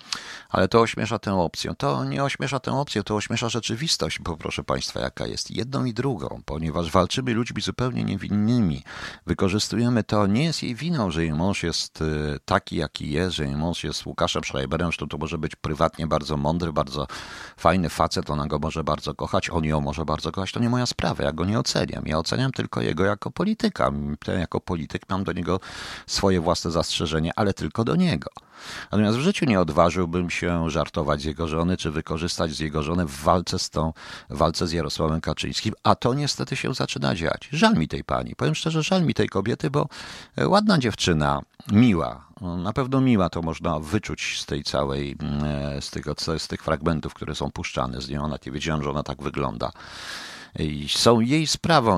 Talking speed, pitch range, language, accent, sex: 190 wpm, 75-100 Hz, Polish, native, male